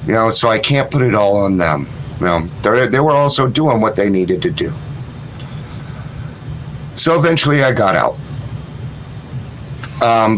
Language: English